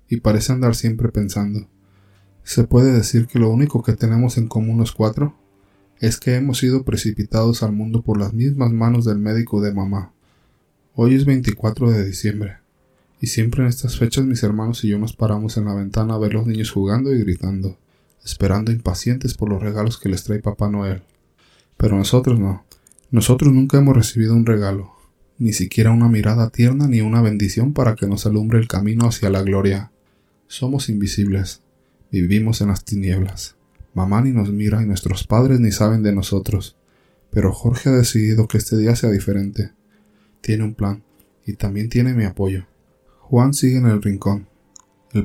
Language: Spanish